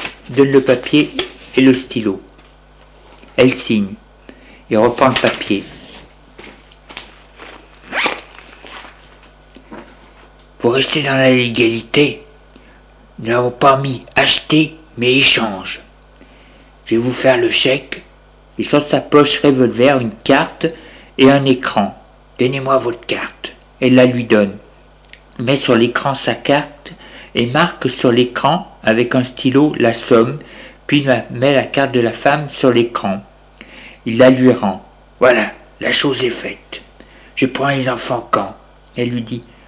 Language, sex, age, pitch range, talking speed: French, male, 60-79, 125-155 Hz, 130 wpm